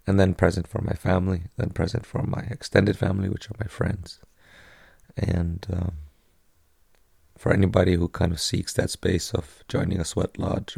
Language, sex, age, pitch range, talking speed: English, male, 30-49, 90-100 Hz, 175 wpm